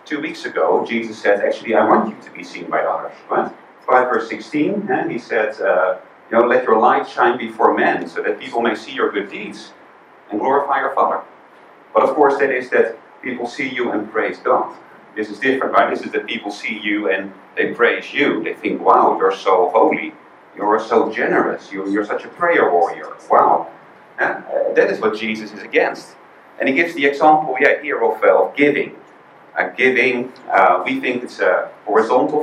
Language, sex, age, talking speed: English, male, 40-59, 190 wpm